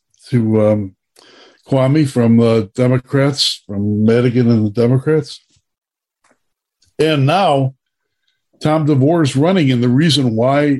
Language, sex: English, male